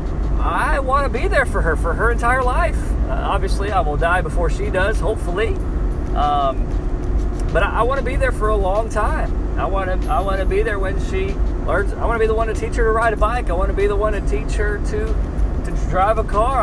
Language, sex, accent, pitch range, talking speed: English, male, American, 75-90 Hz, 255 wpm